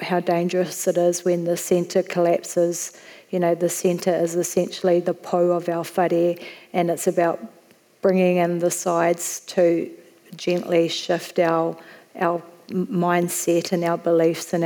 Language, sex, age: English, female, 40-59